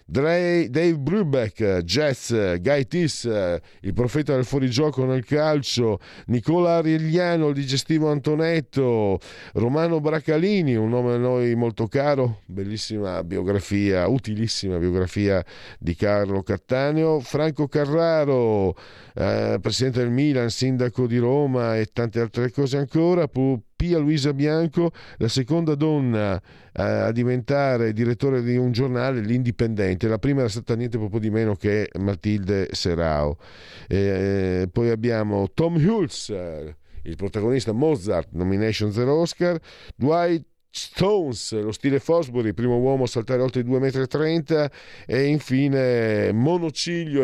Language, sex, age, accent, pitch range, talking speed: Italian, male, 50-69, native, 105-145 Hz, 120 wpm